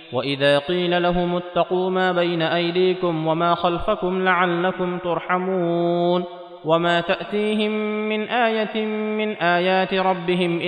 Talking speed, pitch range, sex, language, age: 100 wpm, 165-190 Hz, male, Arabic, 30-49